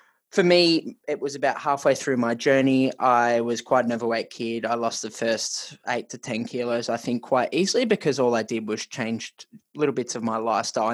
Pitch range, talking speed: 115-140 Hz, 210 wpm